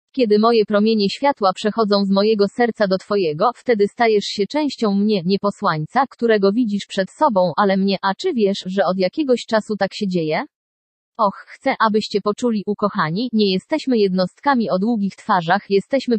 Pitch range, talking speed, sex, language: 195-230 Hz, 165 wpm, female, English